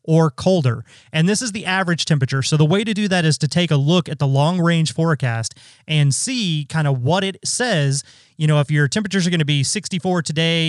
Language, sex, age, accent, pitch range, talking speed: English, male, 30-49, American, 140-175 Hz, 235 wpm